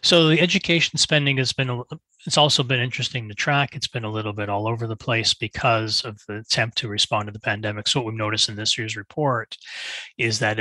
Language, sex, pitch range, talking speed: English, male, 105-130 Hz, 225 wpm